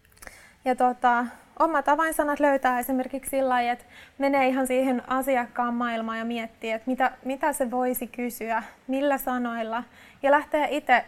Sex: female